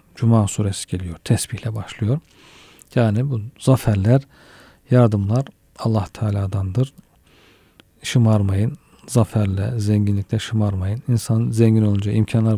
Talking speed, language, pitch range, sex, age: 90 wpm, Turkish, 105-125 Hz, male, 40-59